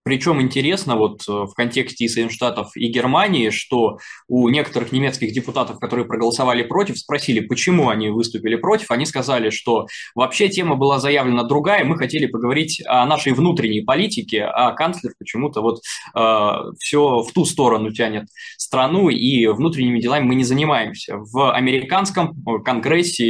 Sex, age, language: male, 20-39, Russian